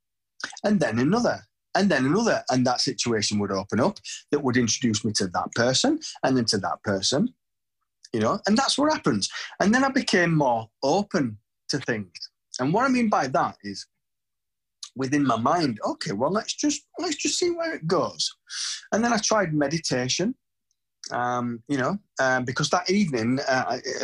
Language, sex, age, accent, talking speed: English, male, 30-49, British, 175 wpm